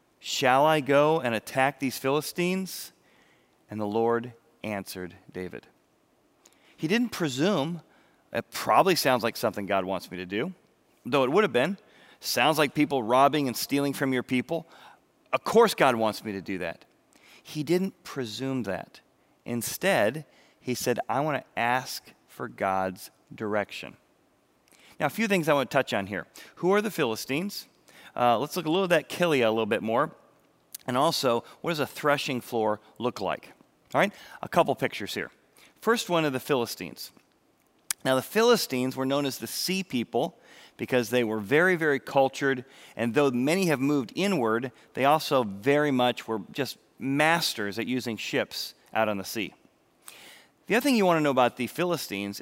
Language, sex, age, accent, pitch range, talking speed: English, male, 40-59, American, 115-155 Hz, 175 wpm